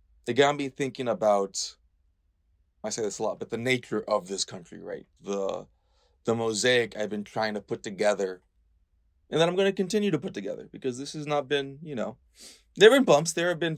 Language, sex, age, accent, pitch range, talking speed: English, male, 20-39, American, 80-125 Hz, 215 wpm